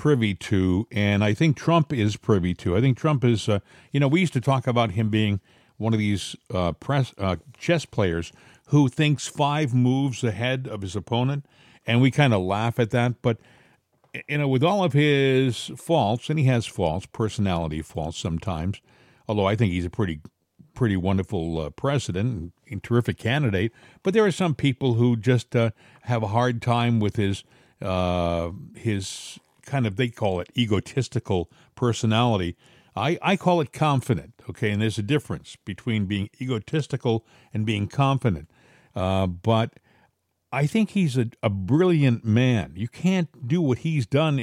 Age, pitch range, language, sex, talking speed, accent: 50-69, 105-140 Hz, English, male, 175 wpm, American